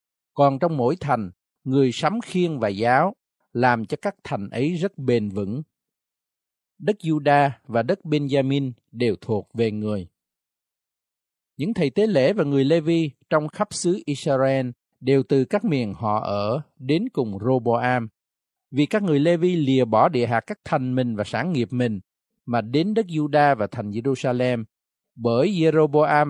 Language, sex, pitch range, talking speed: Vietnamese, male, 120-155 Hz, 160 wpm